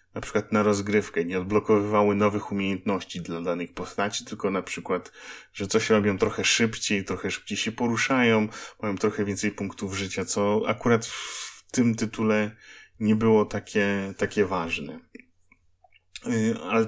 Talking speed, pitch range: 140 wpm, 100-115 Hz